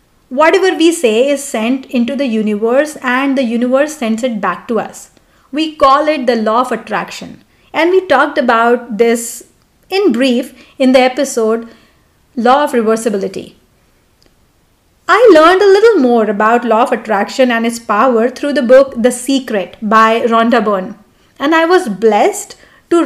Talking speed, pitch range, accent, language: 160 wpm, 220-285 Hz, Indian, English